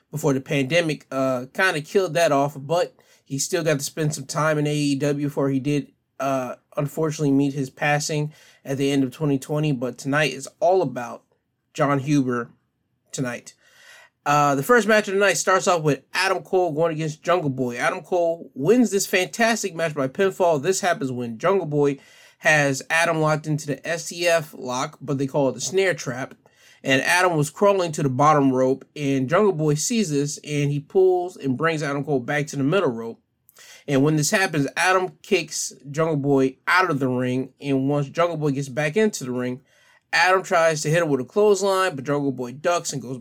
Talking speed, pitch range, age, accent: 195 wpm, 135-165 Hz, 20-39, American